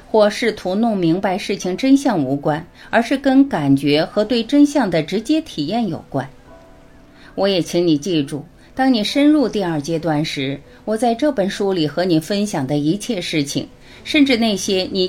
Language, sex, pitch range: Chinese, female, 150-230 Hz